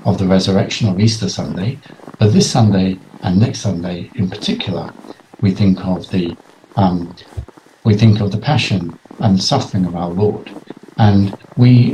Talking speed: 160 wpm